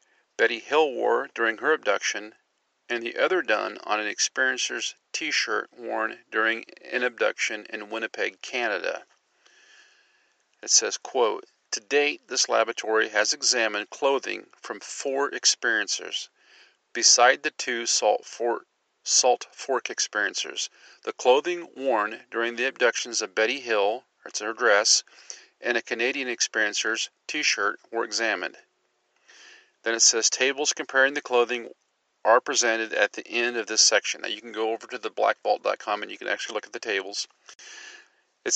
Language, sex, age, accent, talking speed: English, male, 40-59, American, 145 wpm